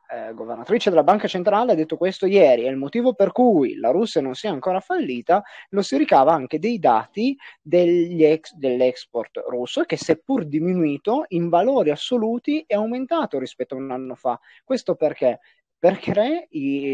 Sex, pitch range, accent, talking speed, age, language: male, 135-195 Hz, native, 150 wpm, 30-49, Italian